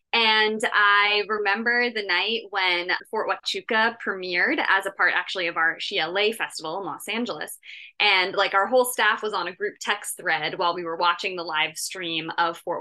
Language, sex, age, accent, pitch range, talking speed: English, female, 20-39, American, 170-210 Hz, 190 wpm